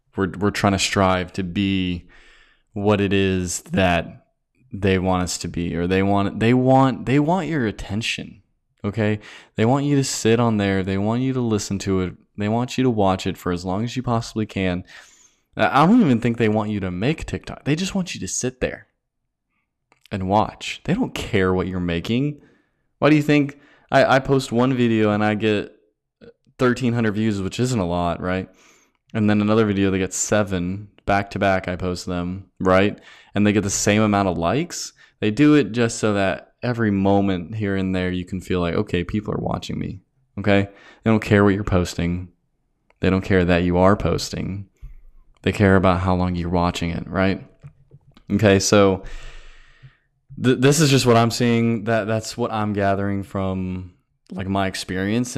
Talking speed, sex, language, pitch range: 195 wpm, male, English, 95-115 Hz